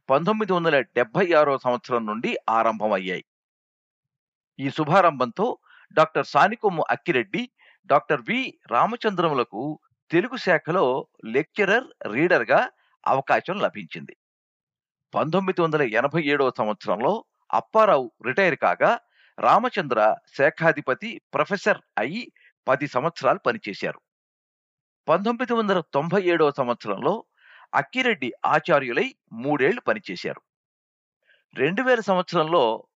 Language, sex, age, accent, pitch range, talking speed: Telugu, male, 50-69, native, 125-205 Hz, 80 wpm